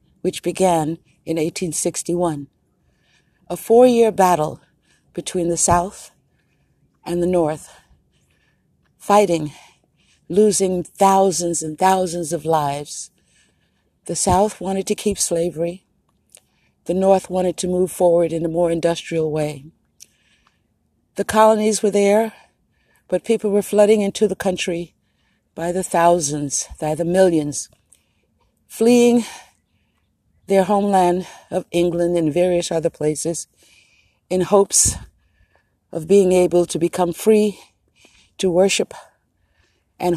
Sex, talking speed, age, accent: female, 110 wpm, 60-79, American